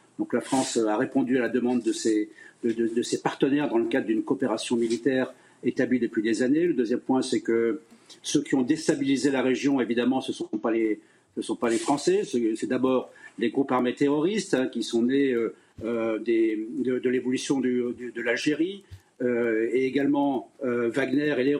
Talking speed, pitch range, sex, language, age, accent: 175 wpm, 120-150 Hz, male, French, 50-69, French